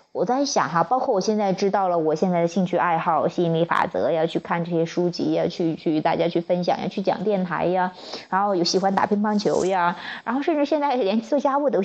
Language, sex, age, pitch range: Chinese, female, 20-39, 175-245 Hz